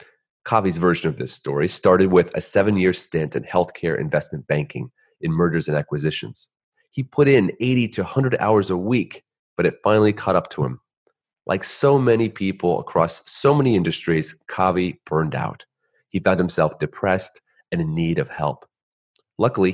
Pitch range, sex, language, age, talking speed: 85-120 Hz, male, English, 30-49, 165 wpm